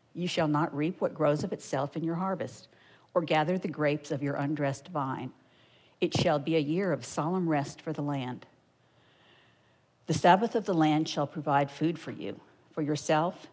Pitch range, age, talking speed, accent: 140-170 Hz, 50-69, 185 wpm, American